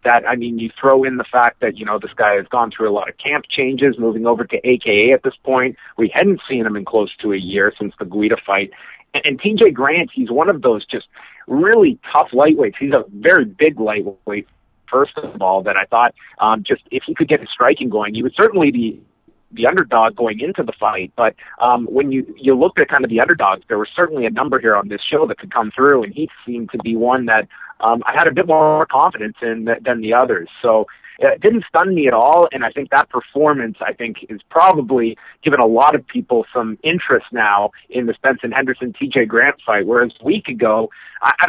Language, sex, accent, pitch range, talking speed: English, male, American, 115-155 Hz, 235 wpm